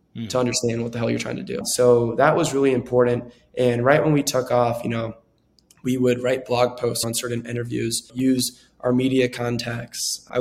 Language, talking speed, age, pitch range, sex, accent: English, 200 wpm, 20-39, 120-130 Hz, male, American